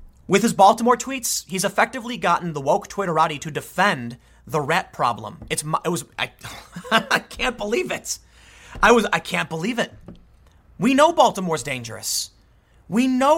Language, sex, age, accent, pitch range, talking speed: English, male, 30-49, American, 145-220 Hz, 155 wpm